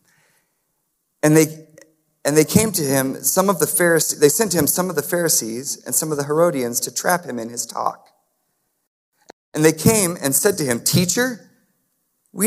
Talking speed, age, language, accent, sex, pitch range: 185 wpm, 40-59, English, American, male, 135-185 Hz